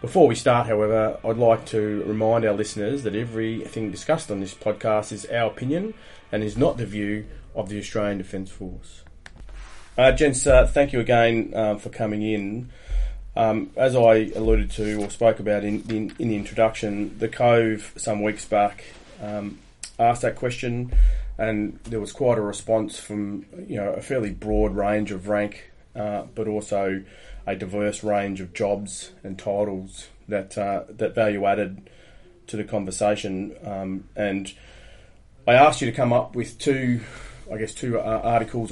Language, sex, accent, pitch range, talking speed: English, male, Australian, 100-115 Hz, 165 wpm